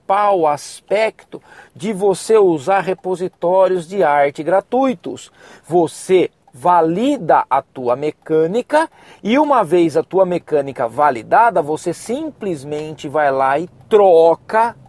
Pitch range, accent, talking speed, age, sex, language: 165-225 Hz, Brazilian, 105 wpm, 40-59, male, Portuguese